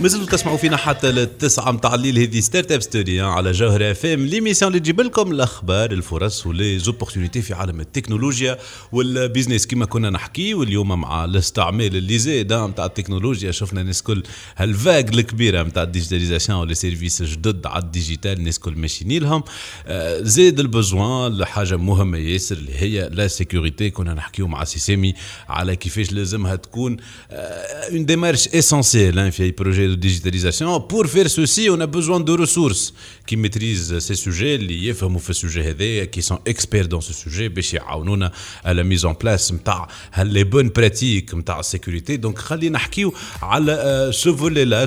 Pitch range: 95-130 Hz